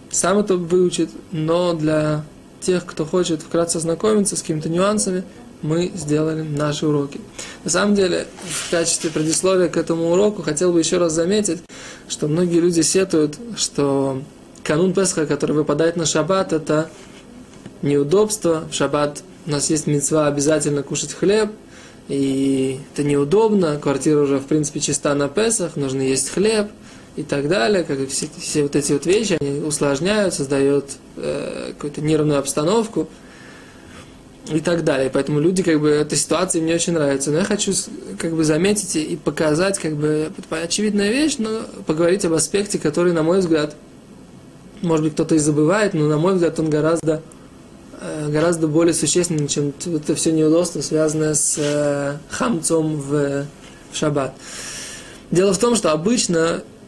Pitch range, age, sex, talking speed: 150-180 Hz, 20-39, male, 155 wpm